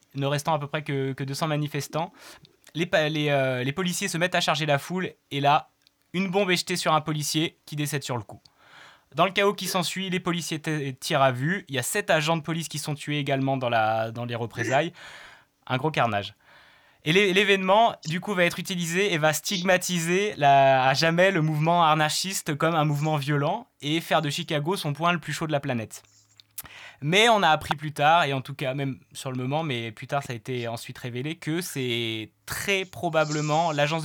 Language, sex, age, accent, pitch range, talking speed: French, male, 20-39, French, 130-165 Hz, 220 wpm